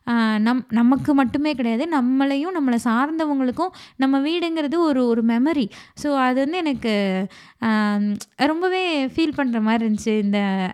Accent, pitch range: native, 220-280 Hz